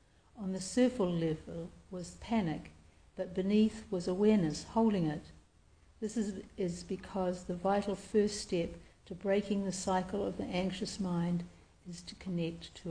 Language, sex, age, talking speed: English, female, 60-79, 150 wpm